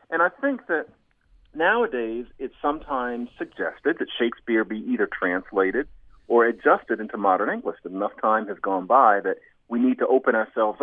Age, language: 50-69, English